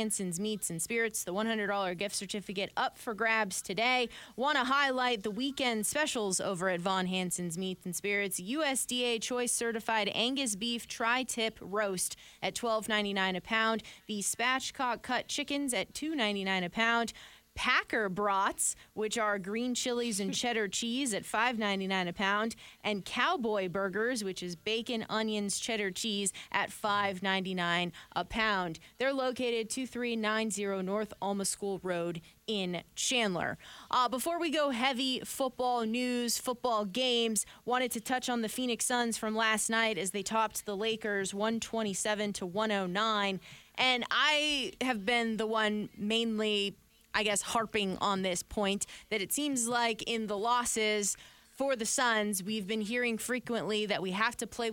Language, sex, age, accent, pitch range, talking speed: English, female, 20-39, American, 200-240 Hz, 165 wpm